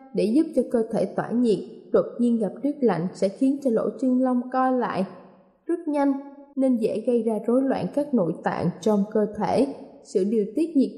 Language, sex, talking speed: Vietnamese, female, 210 wpm